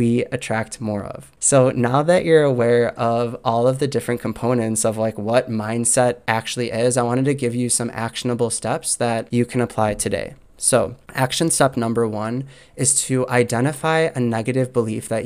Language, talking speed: English, 180 wpm